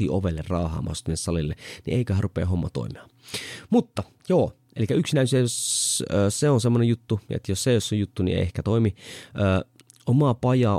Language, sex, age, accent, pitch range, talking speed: Finnish, male, 30-49, native, 85-110 Hz, 150 wpm